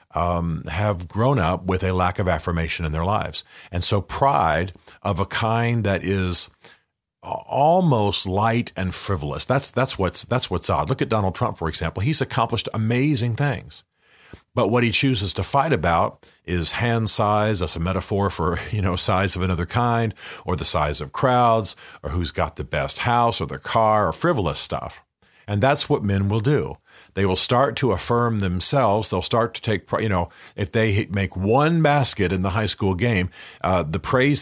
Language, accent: English, American